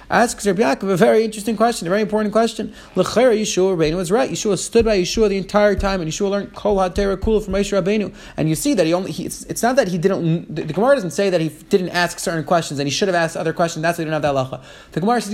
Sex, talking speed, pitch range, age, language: male, 275 wpm, 170-210 Hz, 30-49, English